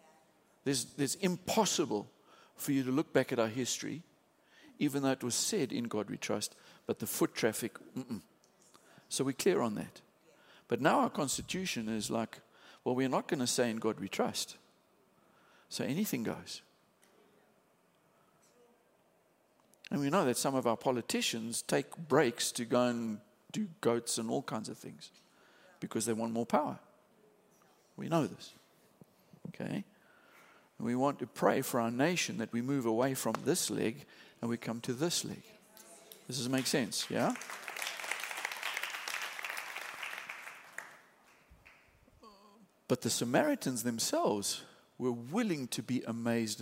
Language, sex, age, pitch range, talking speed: English, male, 50-69, 115-155 Hz, 145 wpm